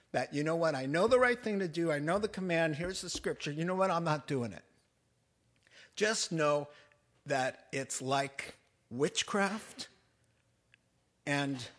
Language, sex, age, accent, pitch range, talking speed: English, male, 50-69, American, 135-220 Hz, 165 wpm